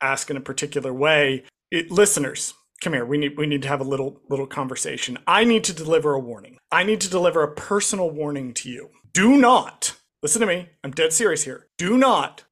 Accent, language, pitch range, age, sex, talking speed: American, English, 155-235 Hz, 30-49, male, 215 wpm